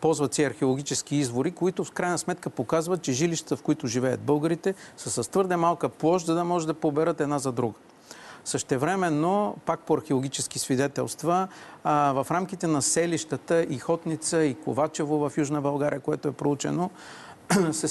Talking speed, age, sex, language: 160 wpm, 50-69, male, Bulgarian